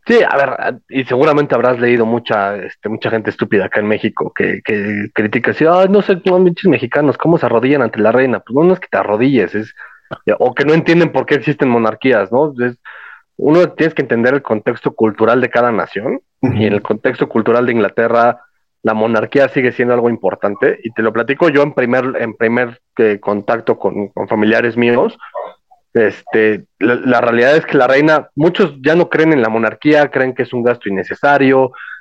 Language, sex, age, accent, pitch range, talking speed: Spanish, male, 30-49, Mexican, 115-145 Hz, 195 wpm